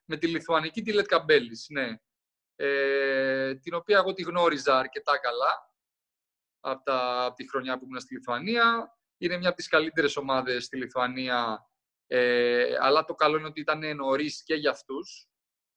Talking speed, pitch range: 150 wpm, 130-170 Hz